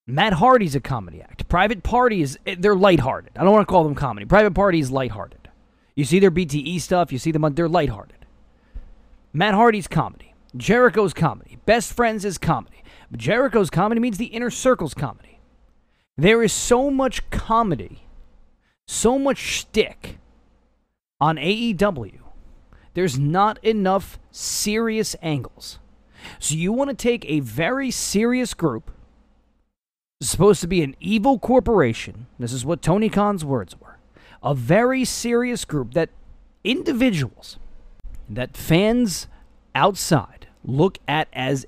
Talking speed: 140 wpm